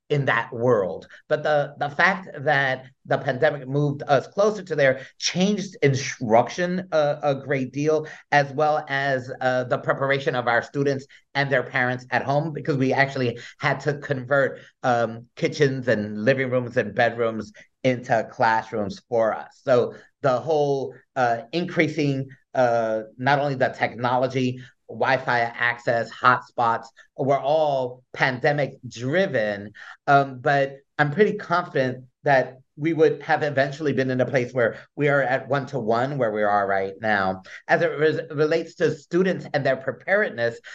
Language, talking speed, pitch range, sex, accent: English, 150 wpm, 125-150 Hz, male, American